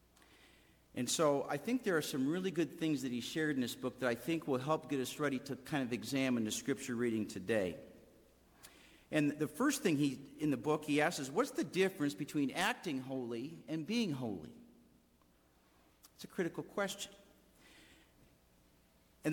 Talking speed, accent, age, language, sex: 175 wpm, American, 50-69, English, male